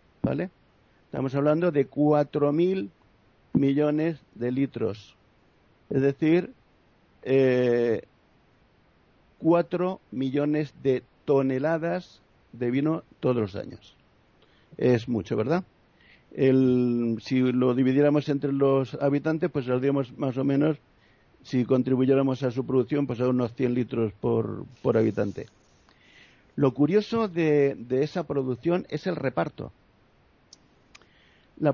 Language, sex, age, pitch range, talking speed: Spanish, male, 50-69, 120-155 Hz, 110 wpm